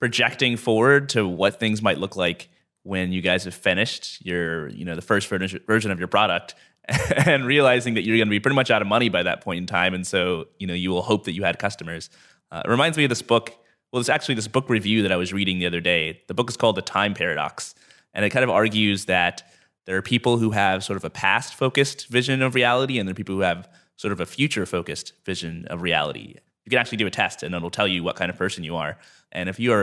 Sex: male